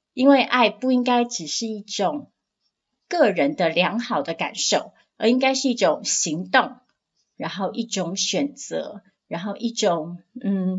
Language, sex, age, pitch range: Chinese, female, 30-49, 195-265 Hz